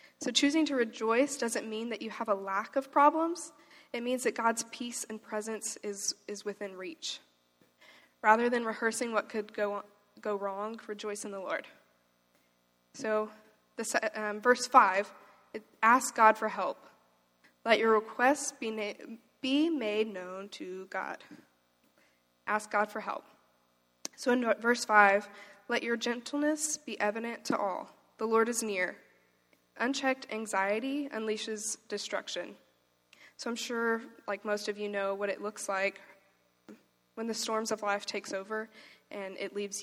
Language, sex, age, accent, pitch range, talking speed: English, female, 20-39, American, 195-240 Hz, 150 wpm